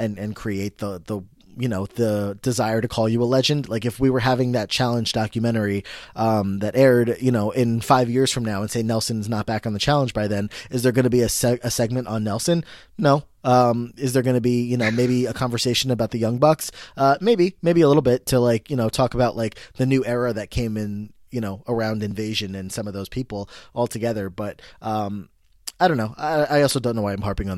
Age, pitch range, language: 20-39, 105-125 Hz, English